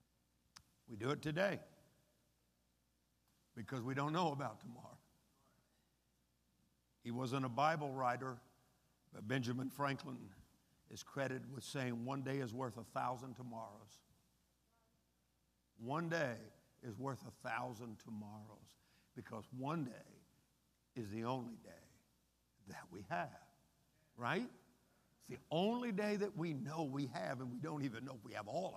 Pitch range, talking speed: 85-140 Hz, 135 wpm